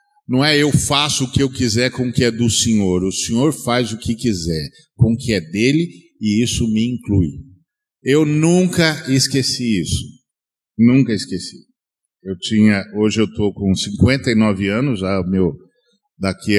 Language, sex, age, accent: Portuguese, male, 50-69, Brazilian